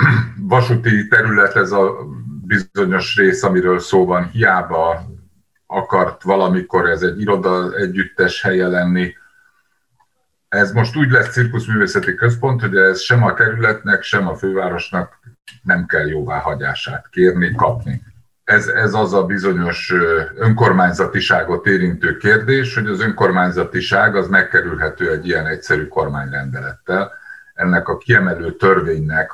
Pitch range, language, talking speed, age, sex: 95-140 Hz, Hungarian, 120 wpm, 50-69, male